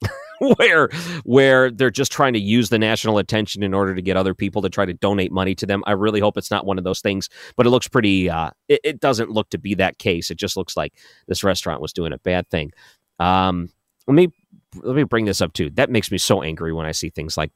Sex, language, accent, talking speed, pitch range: male, English, American, 255 wpm, 95-120 Hz